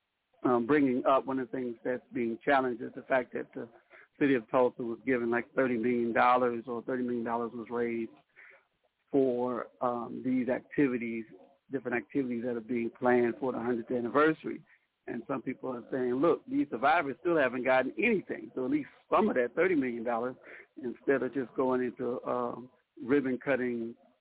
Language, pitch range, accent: English, 120-140 Hz, American